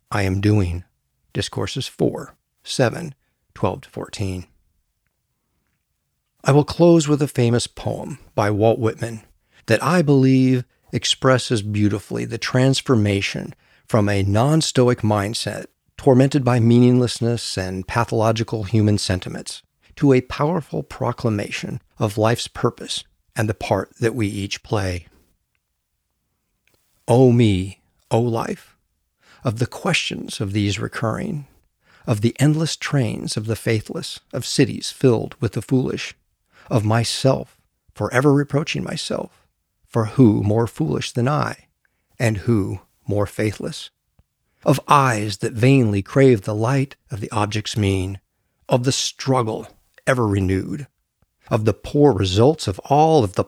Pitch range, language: 100-130 Hz, English